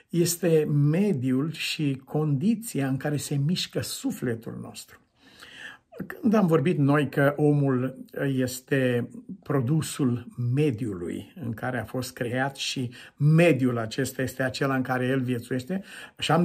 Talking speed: 125 wpm